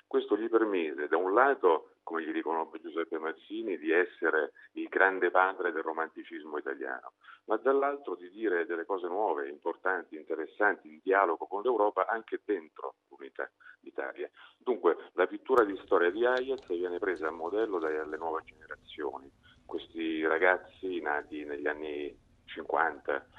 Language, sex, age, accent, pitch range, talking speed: Italian, male, 40-59, native, 330-420 Hz, 145 wpm